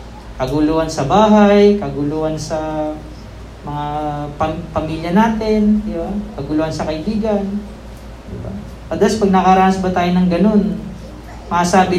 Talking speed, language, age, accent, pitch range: 125 wpm, Filipino, 20-39, native, 160-205 Hz